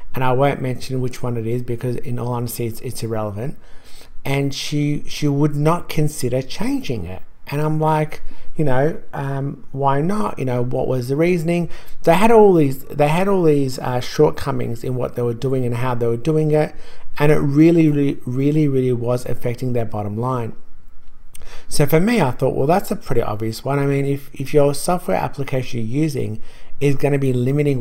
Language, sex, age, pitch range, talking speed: English, male, 50-69, 120-150 Hz, 205 wpm